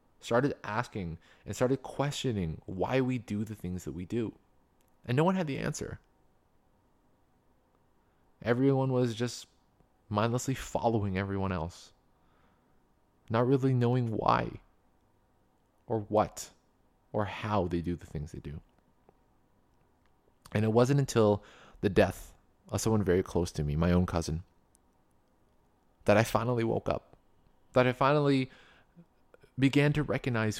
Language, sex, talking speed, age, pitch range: English, male, 130 wpm, 20-39, 85-120 Hz